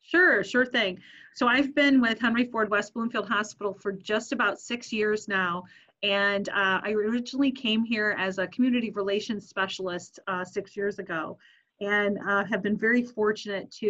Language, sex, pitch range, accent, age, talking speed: English, female, 190-225 Hz, American, 30-49, 175 wpm